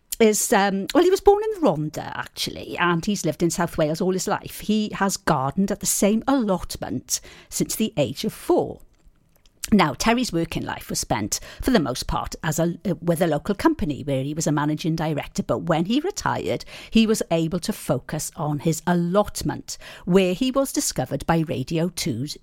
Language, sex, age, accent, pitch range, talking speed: English, female, 50-69, British, 155-220 Hz, 190 wpm